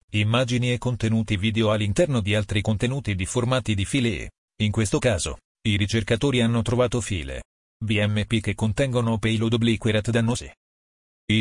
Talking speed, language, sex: 140 wpm, Italian, male